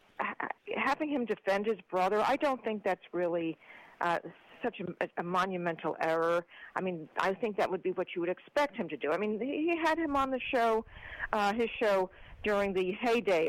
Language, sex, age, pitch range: English, female, 50-69, 175-225 Hz